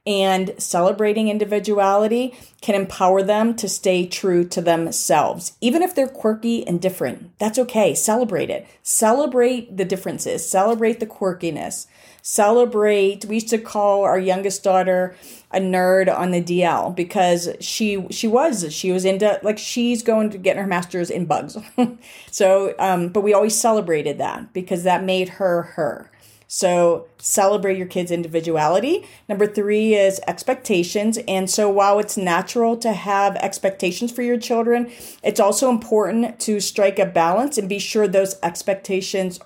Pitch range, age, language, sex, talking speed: 180-220 Hz, 40-59, English, female, 150 wpm